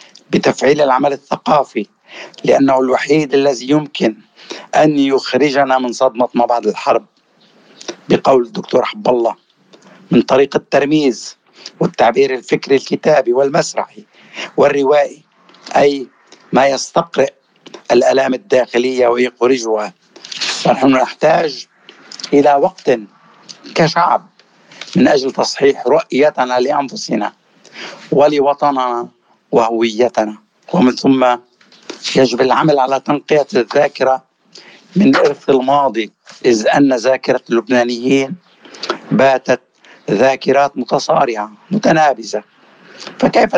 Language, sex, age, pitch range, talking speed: Arabic, male, 60-79, 120-140 Hz, 85 wpm